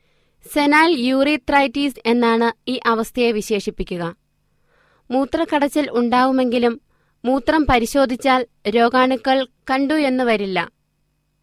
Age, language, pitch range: 20-39, Malayalam, 240-280 Hz